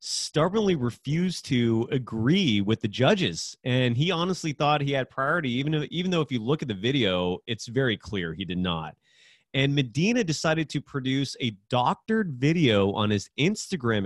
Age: 30-49